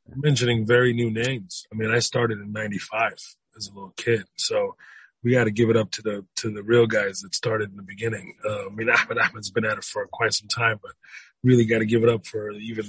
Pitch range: 110-125 Hz